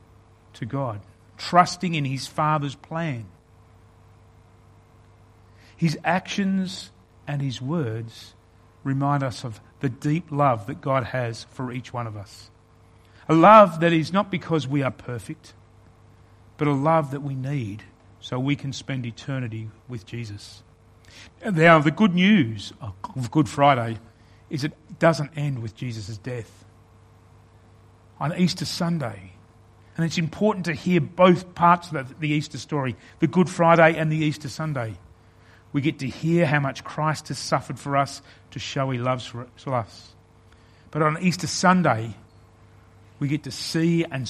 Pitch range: 110-155 Hz